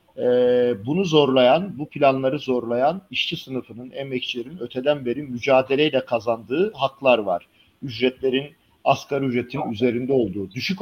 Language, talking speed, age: Turkish, 115 wpm, 50-69